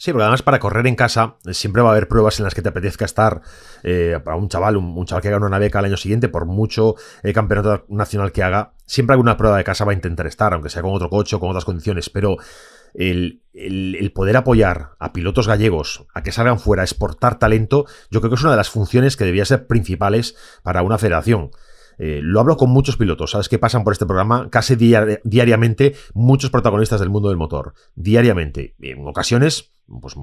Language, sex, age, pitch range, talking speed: Spanish, male, 30-49, 95-125 Hz, 220 wpm